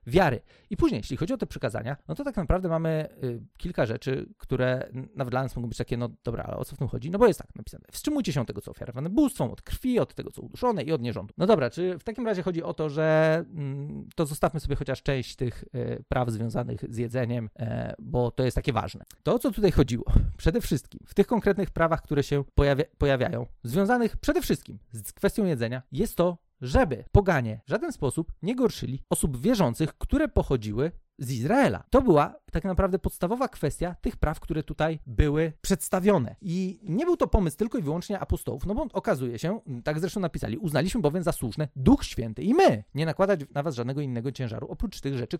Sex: male